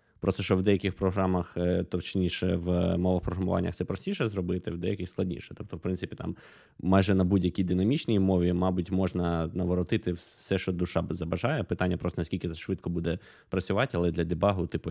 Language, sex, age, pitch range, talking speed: Ukrainian, male, 20-39, 85-100 Hz, 165 wpm